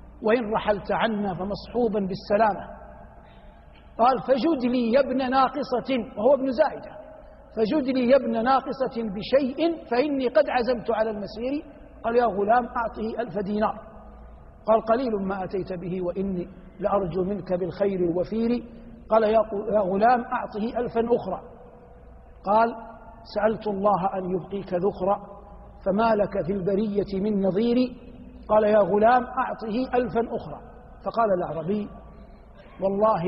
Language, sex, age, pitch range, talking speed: Arabic, male, 50-69, 190-230 Hz, 125 wpm